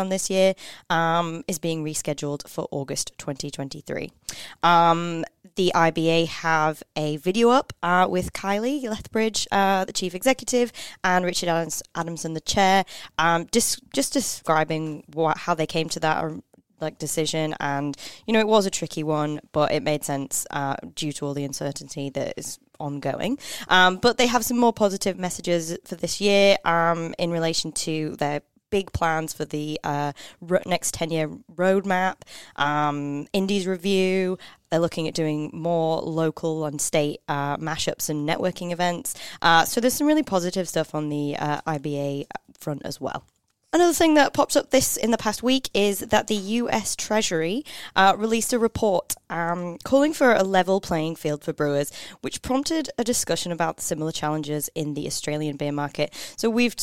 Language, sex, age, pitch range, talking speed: English, female, 20-39, 155-195 Hz, 170 wpm